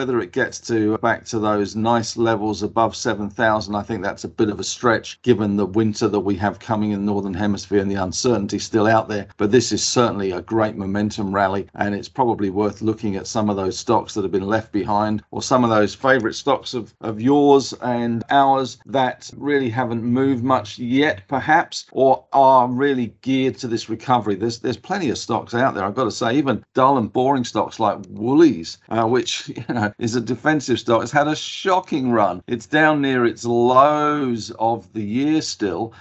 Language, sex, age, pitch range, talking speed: English, male, 50-69, 105-125 Hz, 205 wpm